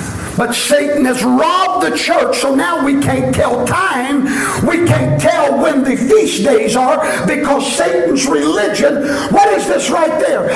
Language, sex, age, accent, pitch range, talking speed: English, male, 50-69, American, 235-300 Hz, 160 wpm